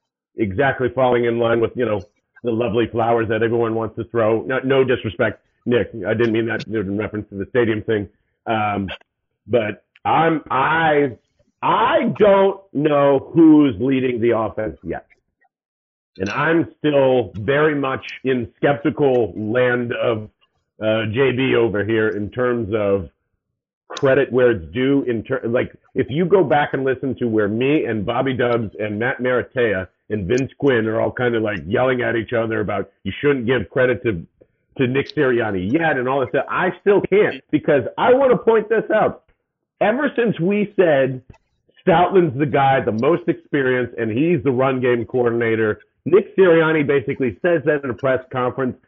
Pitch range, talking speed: 110-145 Hz, 170 wpm